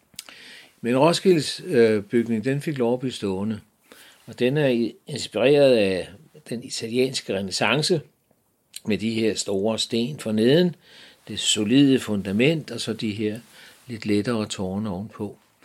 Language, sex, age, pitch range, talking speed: Danish, male, 60-79, 105-130 Hz, 135 wpm